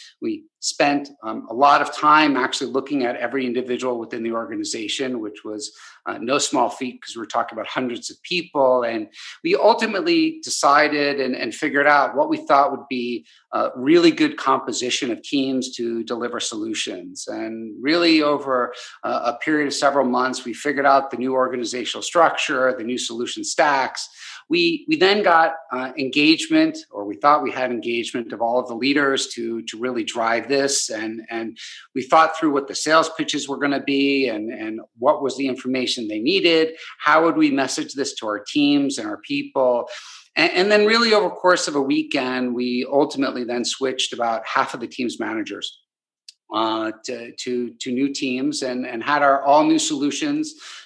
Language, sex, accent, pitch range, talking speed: English, male, American, 125-210 Hz, 185 wpm